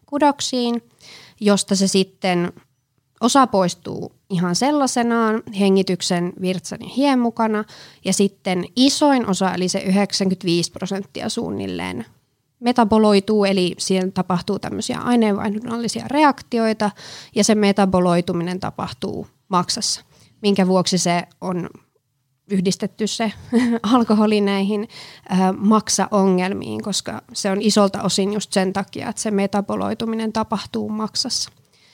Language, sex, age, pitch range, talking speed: Finnish, female, 20-39, 185-225 Hz, 105 wpm